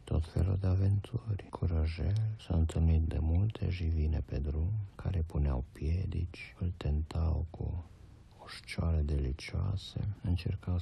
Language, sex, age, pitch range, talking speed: Romanian, male, 60-79, 80-105 Hz, 115 wpm